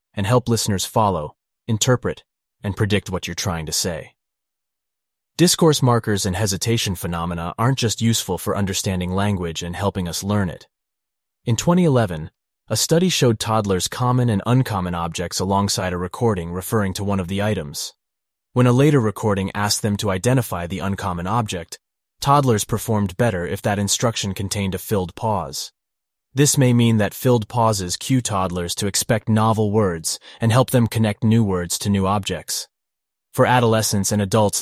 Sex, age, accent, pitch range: male, 30-49, American, 95-115 Hz